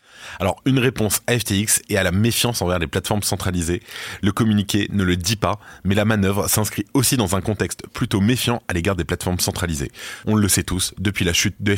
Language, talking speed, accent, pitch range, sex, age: French, 215 wpm, French, 90-110 Hz, male, 20-39